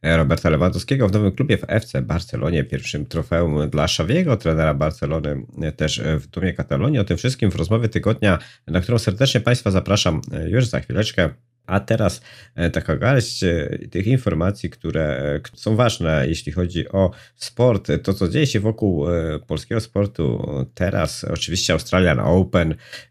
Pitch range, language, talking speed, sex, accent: 80-105 Hz, Polish, 145 wpm, male, native